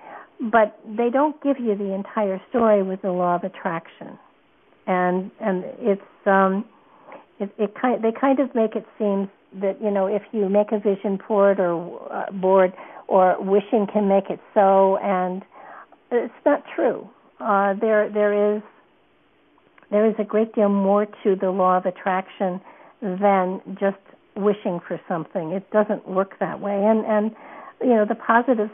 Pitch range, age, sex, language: 190-220 Hz, 60-79, female, English